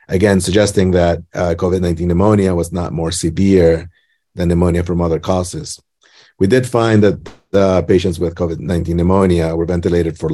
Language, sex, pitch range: English, male, 85-95 Hz